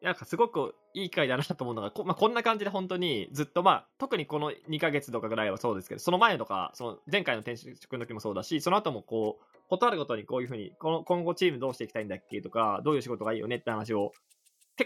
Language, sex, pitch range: Japanese, male, 105-180 Hz